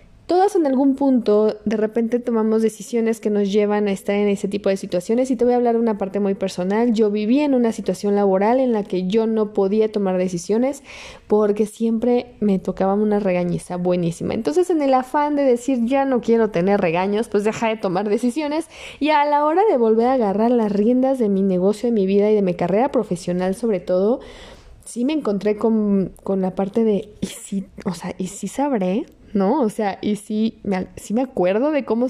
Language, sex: Spanish, female